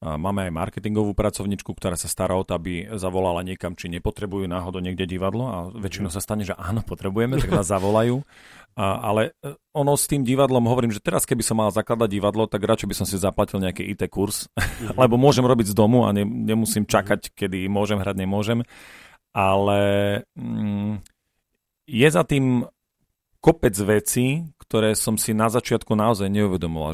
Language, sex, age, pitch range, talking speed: Slovak, male, 40-59, 95-115 Hz, 175 wpm